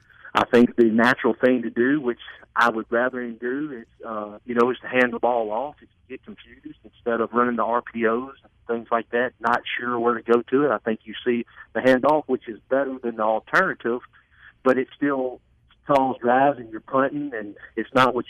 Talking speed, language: 215 wpm, English